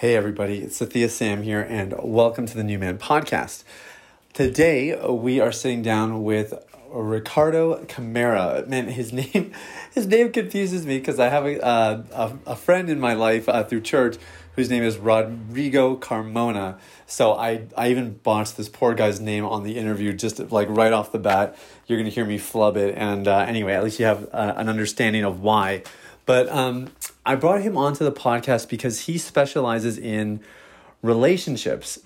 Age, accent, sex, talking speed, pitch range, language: 30-49, American, male, 180 wpm, 110-135 Hz, English